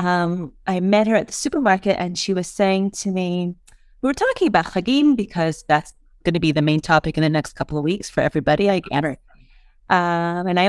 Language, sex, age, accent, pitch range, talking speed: English, female, 30-49, American, 170-225 Hz, 220 wpm